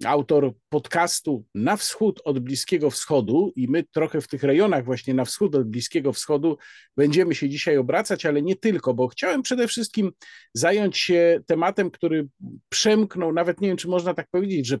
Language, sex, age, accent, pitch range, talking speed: Polish, male, 50-69, native, 145-205 Hz, 175 wpm